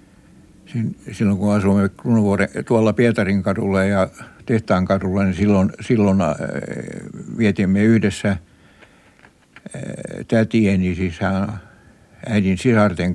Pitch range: 95-110 Hz